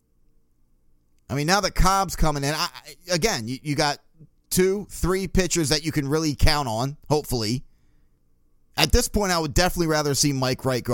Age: 30-49